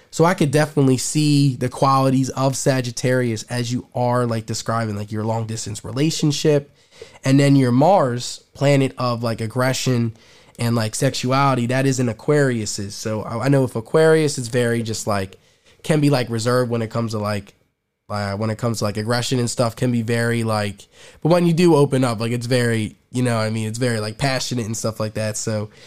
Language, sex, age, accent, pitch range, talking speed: English, male, 20-39, American, 115-140 Hz, 205 wpm